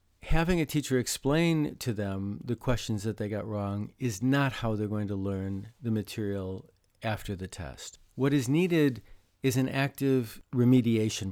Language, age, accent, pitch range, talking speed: English, 50-69, American, 105-140 Hz, 165 wpm